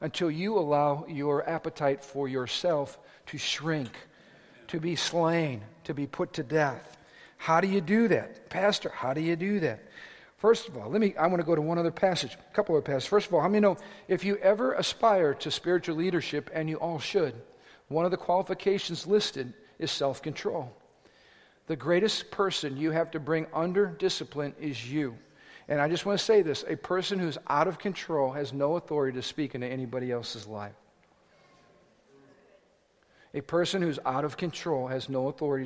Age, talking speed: 50-69, 185 wpm